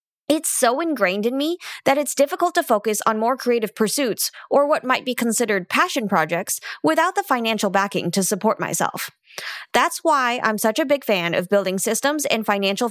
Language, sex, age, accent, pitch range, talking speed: English, female, 20-39, American, 195-270 Hz, 185 wpm